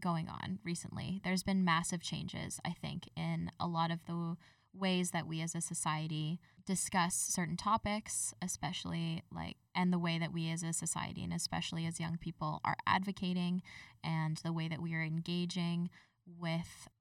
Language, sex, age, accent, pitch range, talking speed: English, female, 10-29, American, 165-185 Hz, 170 wpm